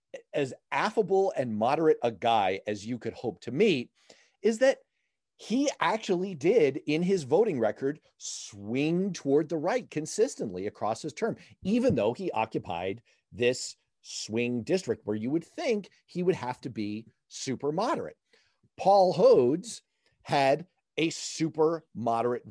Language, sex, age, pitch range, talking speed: English, male, 40-59, 120-190 Hz, 140 wpm